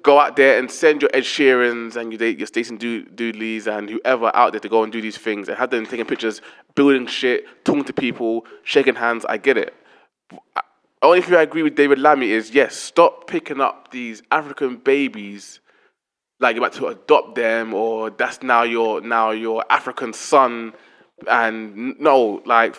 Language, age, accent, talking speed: English, 20-39, British, 190 wpm